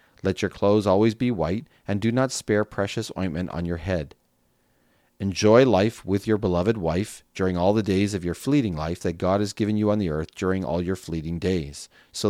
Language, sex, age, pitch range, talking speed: English, male, 40-59, 85-105 Hz, 210 wpm